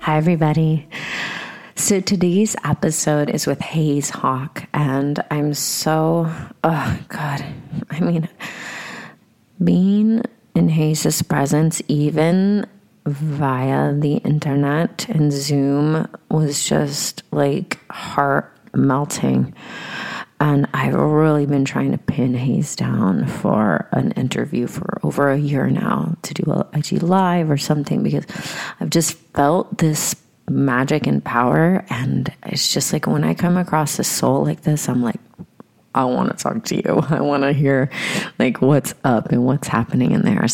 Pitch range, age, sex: 135-160 Hz, 30-49, female